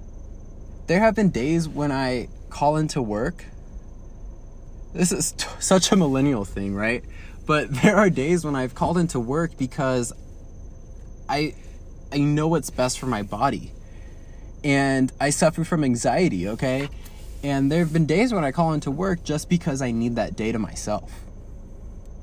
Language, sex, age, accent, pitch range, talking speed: English, male, 20-39, American, 95-150 Hz, 160 wpm